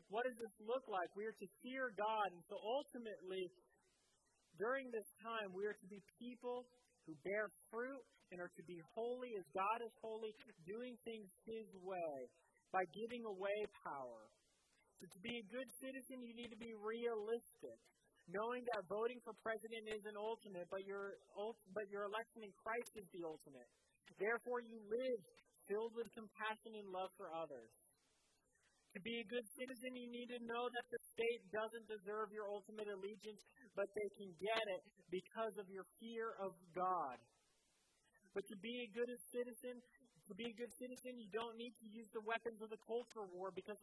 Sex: male